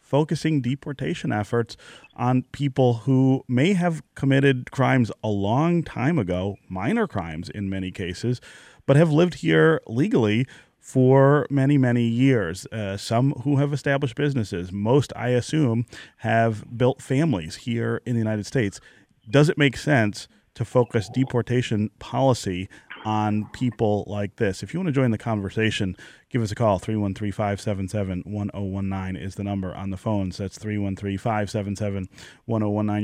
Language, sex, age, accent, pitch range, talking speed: English, male, 30-49, American, 105-130 Hz, 140 wpm